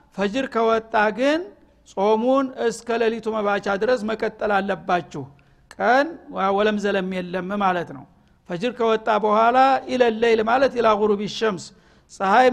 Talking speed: 120 wpm